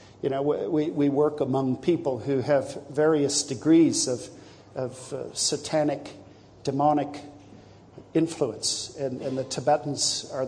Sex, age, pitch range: male, 50-69, 115-150 Hz